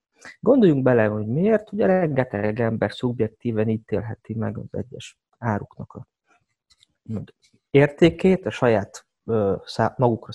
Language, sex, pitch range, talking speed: Hungarian, male, 110-160 Hz, 105 wpm